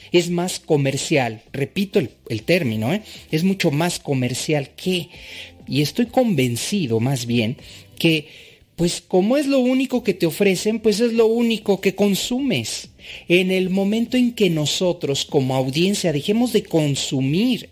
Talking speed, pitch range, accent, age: 145 wpm, 140-205 Hz, Mexican, 40-59